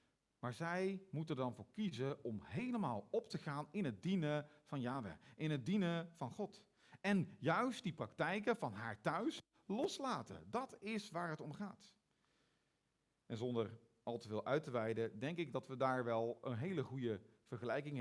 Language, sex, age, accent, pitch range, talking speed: Dutch, male, 40-59, Dutch, 125-190 Hz, 175 wpm